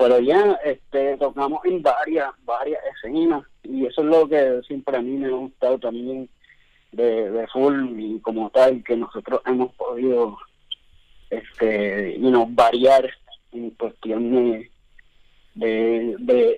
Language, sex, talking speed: Spanish, male, 140 wpm